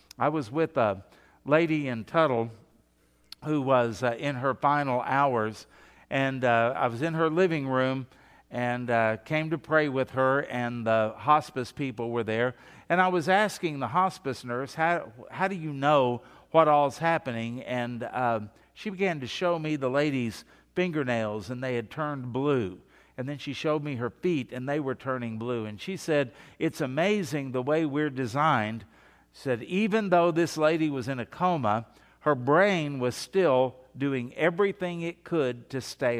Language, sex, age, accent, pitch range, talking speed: English, male, 50-69, American, 125-165 Hz, 175 wpm